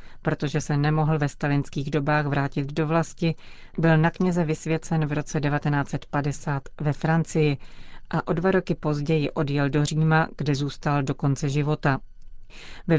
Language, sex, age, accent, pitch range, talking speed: Czech, female, 40-59, native, 145-165 Hz, 150 wpm